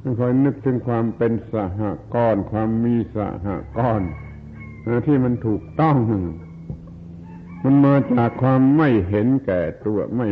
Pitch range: 100-125 Hz